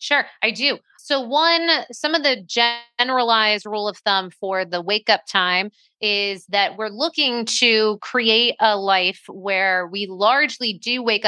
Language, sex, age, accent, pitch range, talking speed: English, female, 30-49, American, 185-230 Hz, 155 wpm